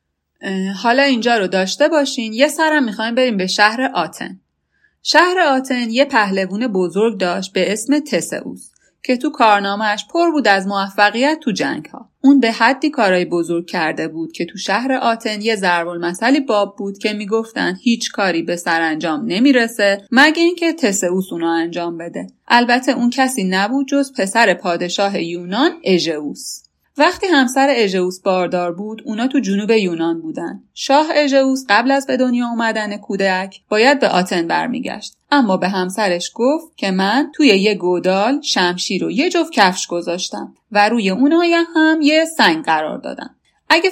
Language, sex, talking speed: Persian, female, 160 wpm